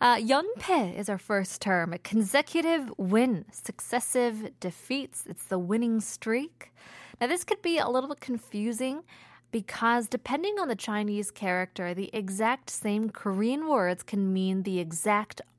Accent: American